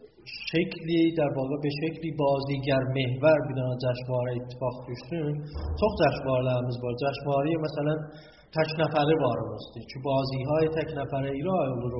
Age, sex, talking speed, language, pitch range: 30-49, male, 145 wpm, Persian, 135-160 Hz